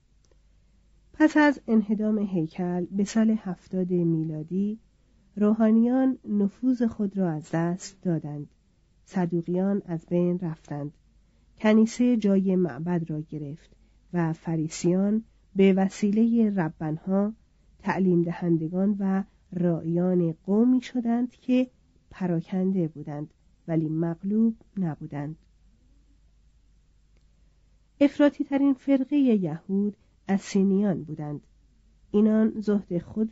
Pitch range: 170-215 Hz